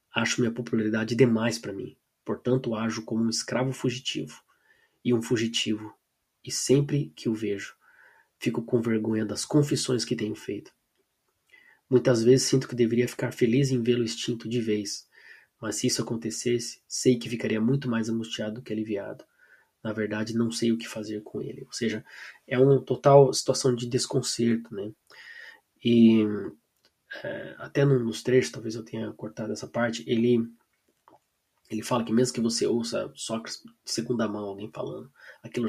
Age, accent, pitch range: 20-39, Brazilian, 110-130 Hz